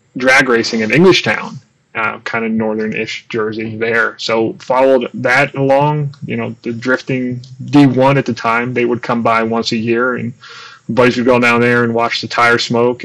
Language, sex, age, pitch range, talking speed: English, male, 20-39, 115-130 Hz, 200 wpm